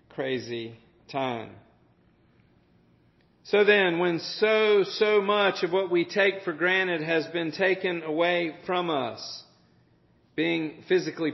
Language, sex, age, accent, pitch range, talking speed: English, male, 40-59, American, 140-180 Hz, 115 wpm